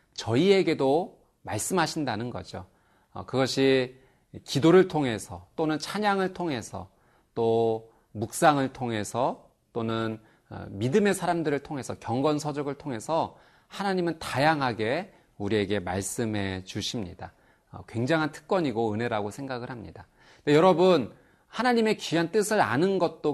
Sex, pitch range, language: male, 110-165 Hz, Korean